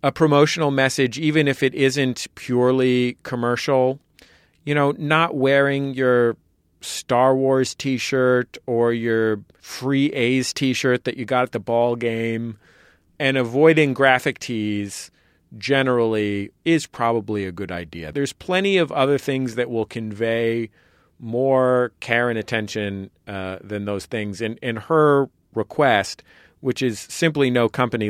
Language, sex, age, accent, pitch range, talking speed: English, male, 40-59, American, 110-140 Hz, 135 wpm